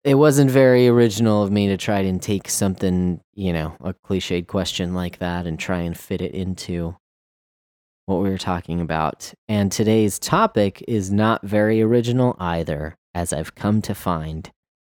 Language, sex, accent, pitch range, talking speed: English, male, American, 90-115 Hz, 170 wpm